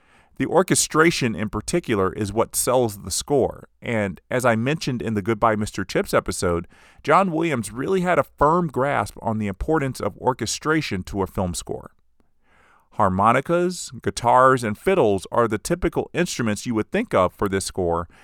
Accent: American